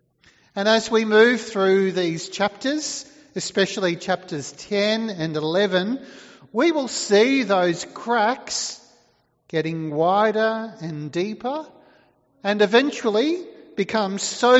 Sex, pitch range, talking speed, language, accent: male, 170-245 Hz, 105 wpm, English, Australian